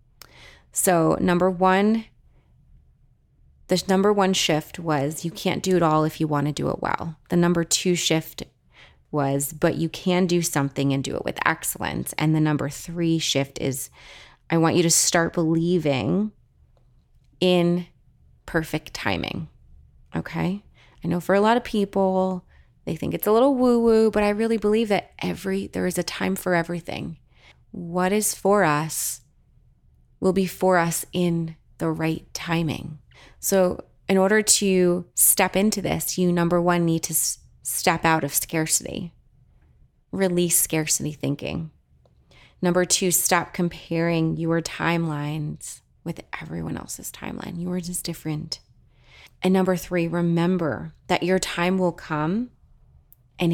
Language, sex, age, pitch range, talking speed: English, female, 30-49, 150-185 Hz, 145 wpm